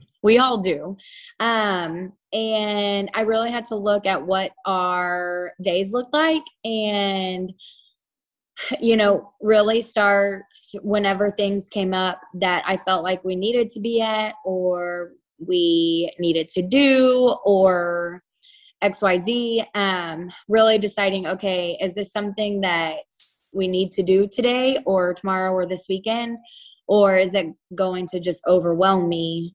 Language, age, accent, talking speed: English, 20-39, American, 135 wpm